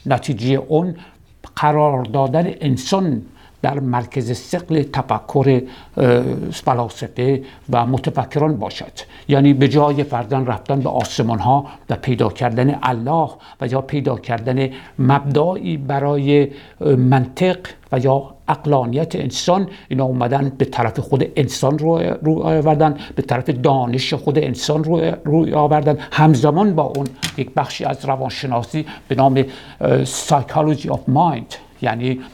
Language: Persian